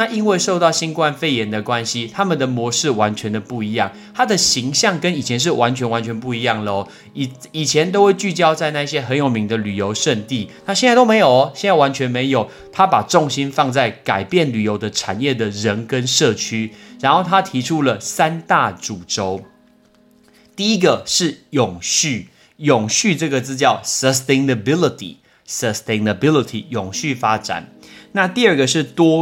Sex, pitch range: male, 115-170 Hz